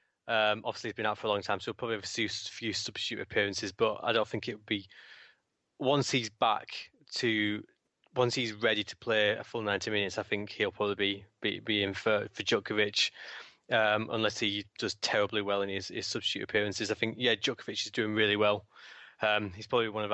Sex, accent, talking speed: male, British, 220 wpm